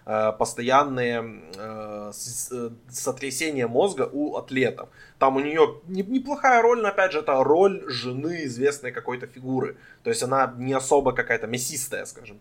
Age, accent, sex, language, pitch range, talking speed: 20-39, native, male, Ukrainian, 125-160 Hz, 145 wpm